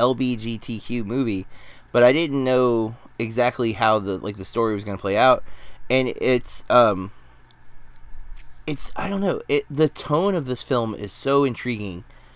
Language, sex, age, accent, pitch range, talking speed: English, male, 30-49, American, 110-140 Hz, 160 wpm